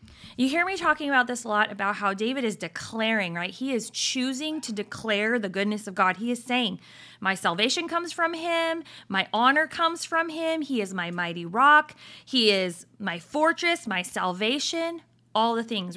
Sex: female